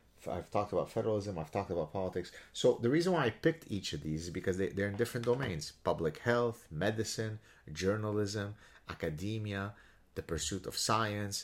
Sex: male